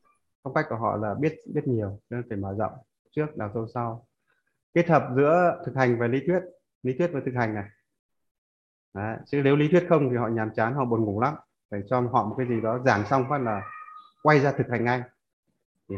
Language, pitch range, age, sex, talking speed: Vietnamese, 115-140 Hz, 20-39, male, 230 wpm